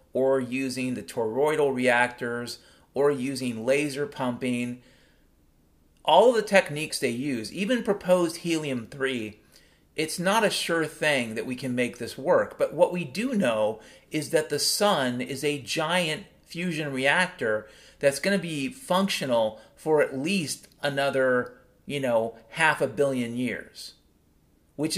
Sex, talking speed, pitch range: male, 140 wpm, 125-170 Hz